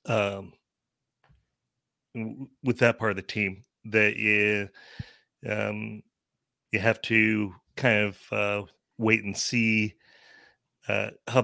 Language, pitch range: English, 105-115 Hz